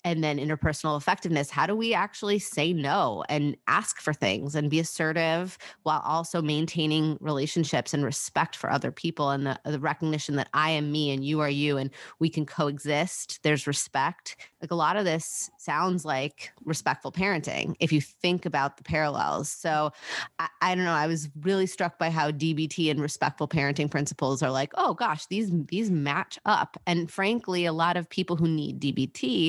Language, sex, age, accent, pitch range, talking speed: English, female, 30-49, American, 145-170 Hz, 185 wpm